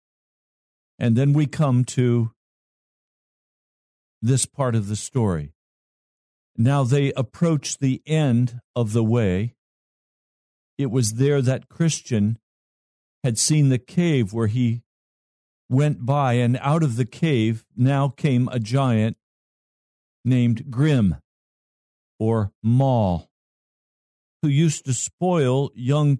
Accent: American